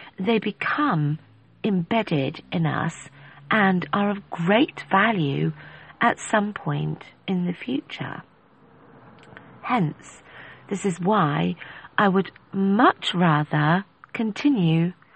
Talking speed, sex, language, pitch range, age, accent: 100 wpm, female, English, 155-215 Hz, 40-59, British